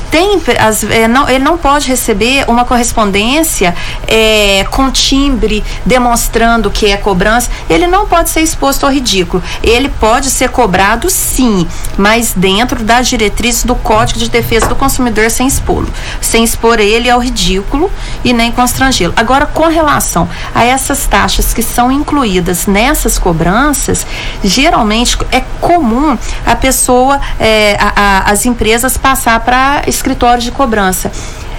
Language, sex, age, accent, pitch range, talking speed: Portuguese, female, 40-59, Brazilian, 215-260 Hz, 140 wpm